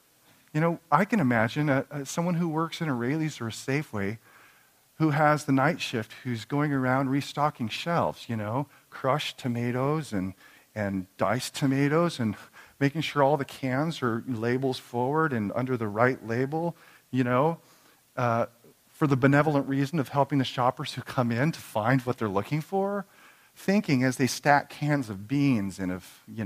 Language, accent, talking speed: English, American, 175 wpm